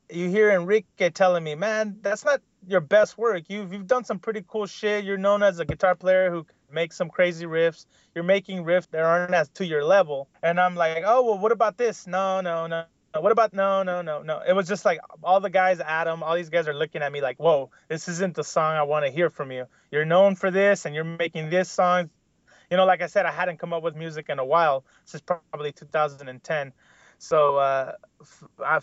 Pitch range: 165-220 Hz